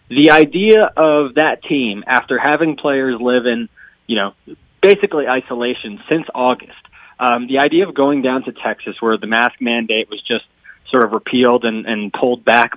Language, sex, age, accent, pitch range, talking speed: English, male, 20-39, American, 125-155 Hz, 175 wpm